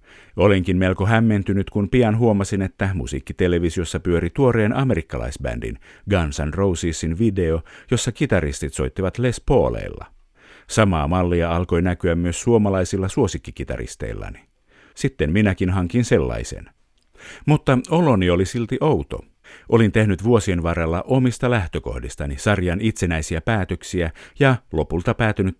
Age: 50-69